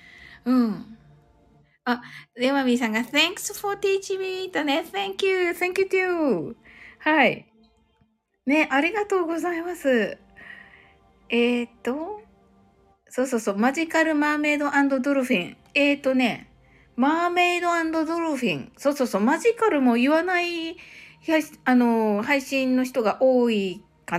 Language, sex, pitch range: Japanese, female, 220-320 Hz